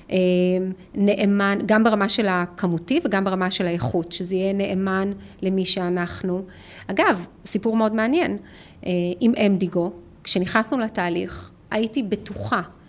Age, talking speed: 30-49, 110 wpm